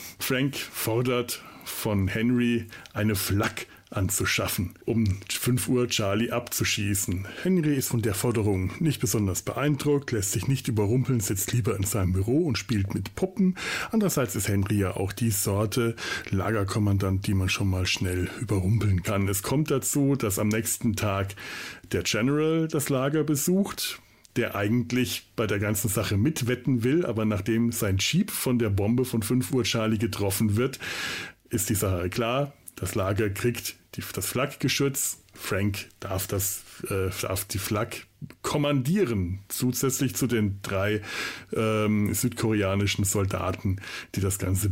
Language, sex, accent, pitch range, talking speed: German, male, German, 100-125 Hz, 145 wpm